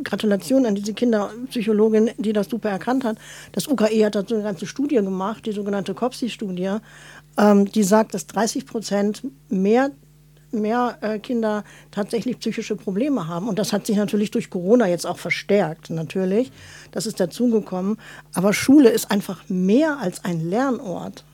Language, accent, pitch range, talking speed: German, German, 190-225 Hz, 155 wpm